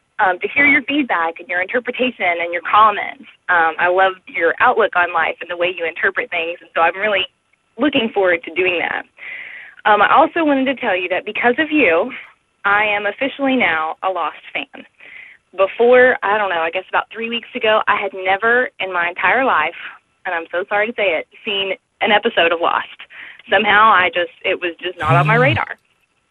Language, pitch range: English, 180-240 Hz